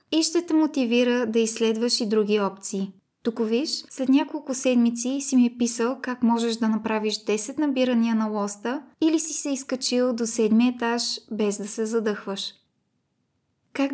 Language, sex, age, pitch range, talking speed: Bulgarian, female, 20-39, 215-260 Hz, 165 wpm